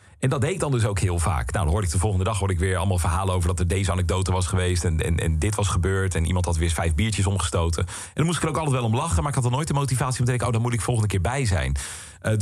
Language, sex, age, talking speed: Dutch, male, 40-59, 340 wpm